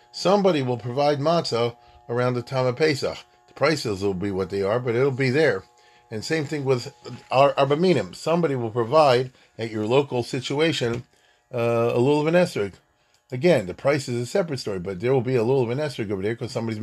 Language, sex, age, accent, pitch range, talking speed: English, male, 40-59, American, 115-145 Hz, 205 wpm